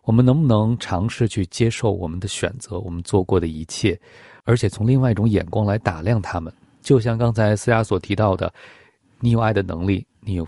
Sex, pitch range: male, 95-120 Hz